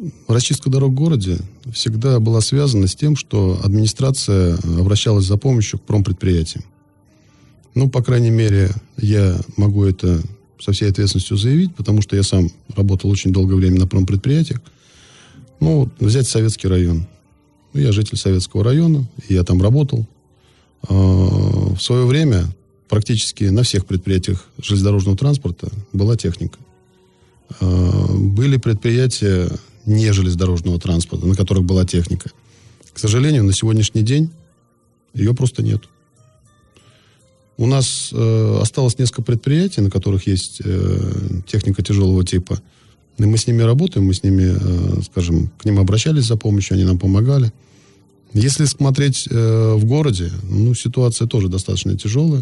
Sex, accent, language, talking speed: male, native, Russian, 135 wpm